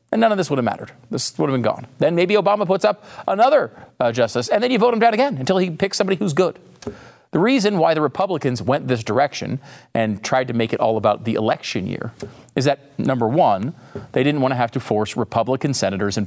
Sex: male